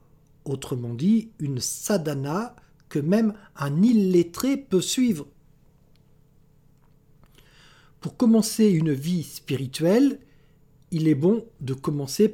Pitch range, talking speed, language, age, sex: 145-170 Hz, 95 wpm, French, 60-79, male